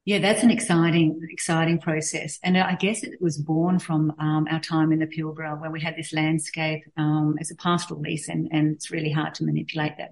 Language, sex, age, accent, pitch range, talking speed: English, female, 40-59, Australian, 150-165 Hz, 220 wpm